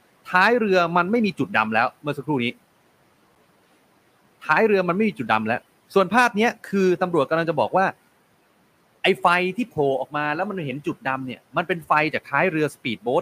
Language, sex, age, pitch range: Thai, male, 30-49, 130-185 Hz